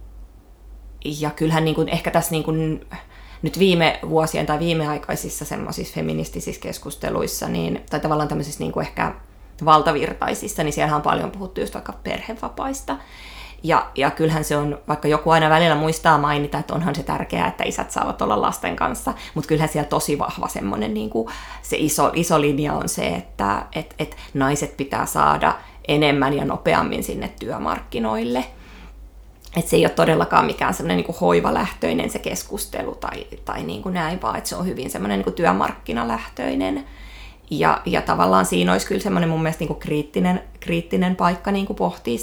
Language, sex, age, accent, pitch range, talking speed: Finnish, female, 20-39, native, 100-160 Hz, 165 wpm